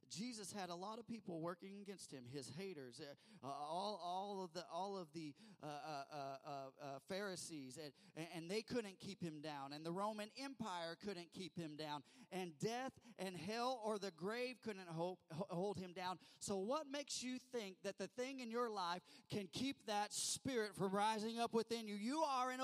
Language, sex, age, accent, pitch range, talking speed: English, male, 40-59, American, 165-220 Hz, 195 wpm